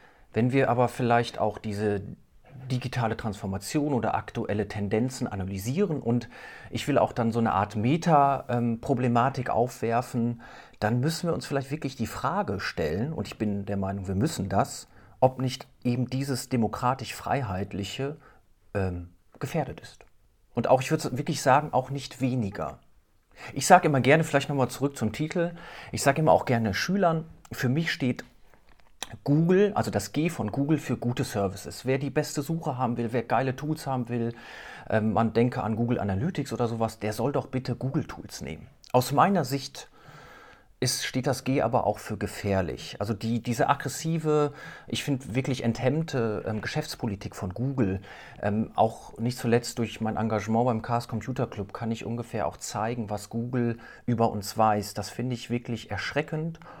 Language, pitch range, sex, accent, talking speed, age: German, 110-140 Hz, male, German, 165 wpm, 40-59